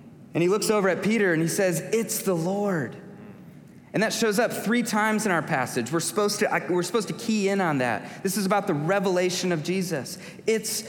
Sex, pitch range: male, 130-185 Hz